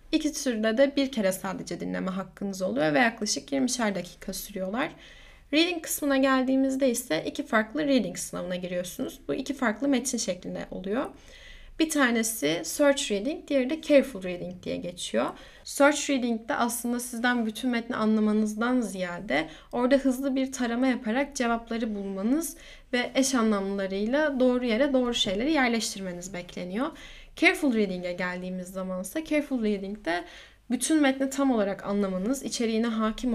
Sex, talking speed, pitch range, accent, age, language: female, 140 wpm, 205-280 Hz, native, 10-29, Turkish